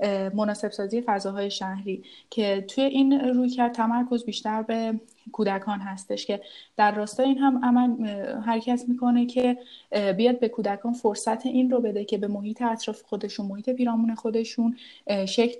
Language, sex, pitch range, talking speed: Persian, female, 205-245 Hz, 150 wpm